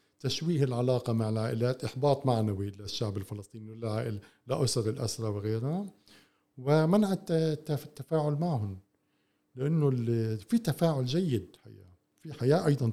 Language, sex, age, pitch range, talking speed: Arabic, male, 50-69, 105-140 Hz, 105 wpm